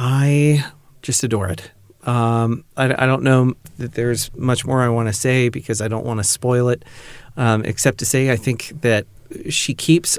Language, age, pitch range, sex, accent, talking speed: English, 40-59, 110-135 Hz, male, American, 195 wpm